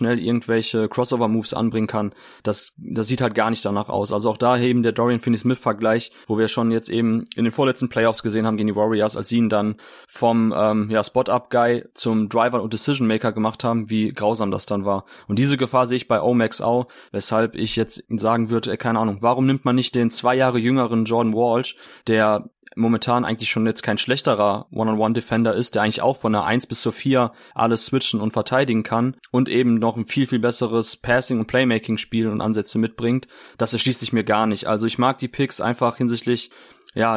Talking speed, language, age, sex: 205 wpm, German, 20-39, male